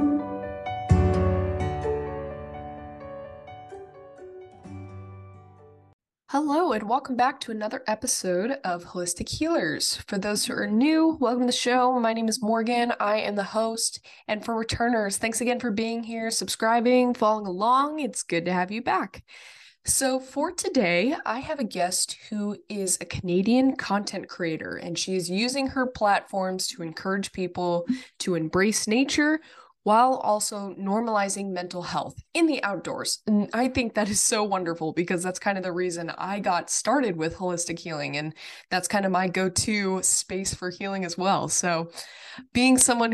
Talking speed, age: 150 wpm, 20-39